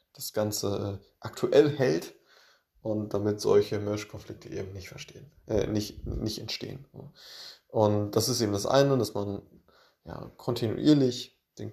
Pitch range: 100-120 Hz